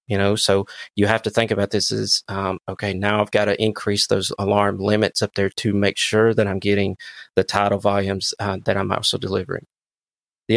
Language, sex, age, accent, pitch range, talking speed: English, male, 30-49, American, 100-115 Hz, 210 wpm